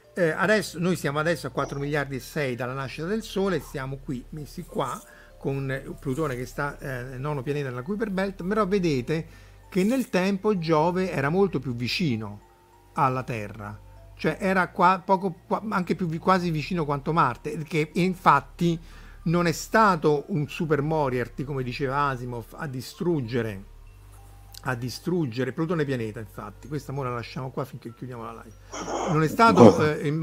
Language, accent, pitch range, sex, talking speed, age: Italian, native, 130-170 Hz, male, 165 wpm, 50-69